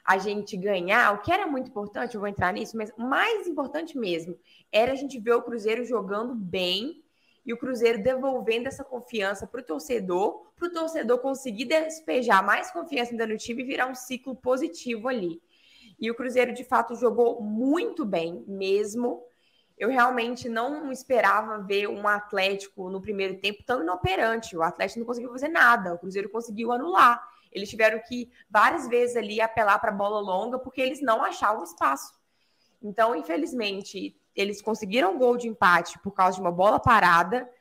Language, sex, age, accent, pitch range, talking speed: Portuguese, female, 20-39, Brazilian, 200-255 Hz, 175 wpm